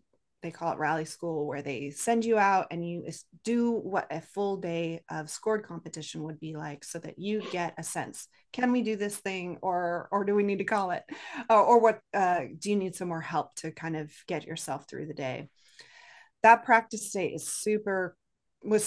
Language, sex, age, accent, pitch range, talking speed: English, female, 30-49, American, 165-210 Hz, 210 wpm